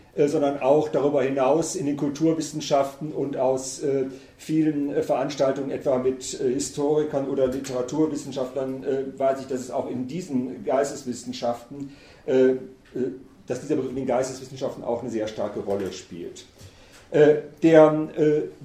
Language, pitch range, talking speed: German, 135-155 Hz, 150 wpm